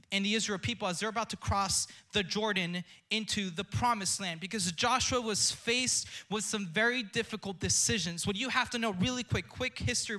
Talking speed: 195 wpm